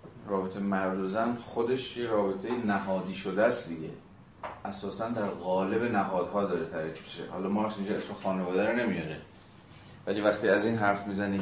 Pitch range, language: 95-115 Hz, Persian